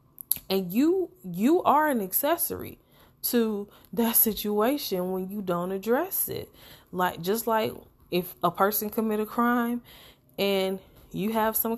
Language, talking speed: English, 140 wpm